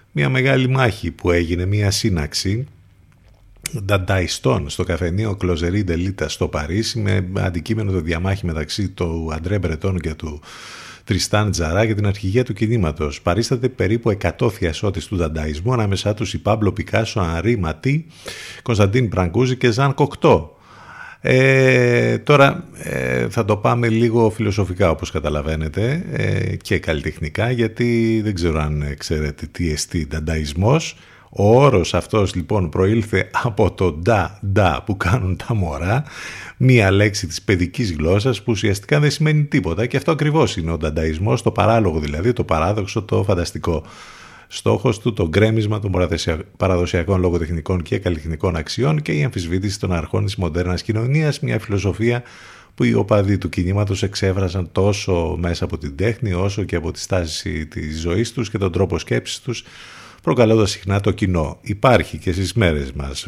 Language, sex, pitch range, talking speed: Greek, male, 85-110 Hz, 150 wpm